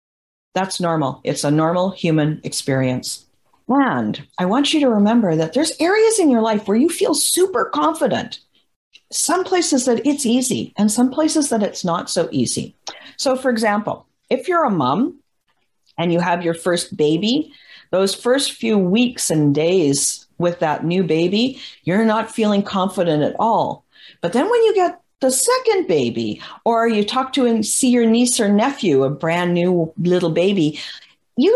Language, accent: English, American